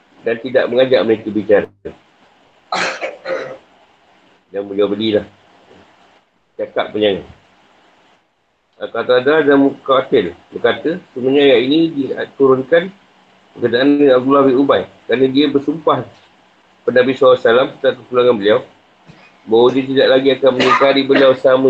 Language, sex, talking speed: Malay, male, 110 wpm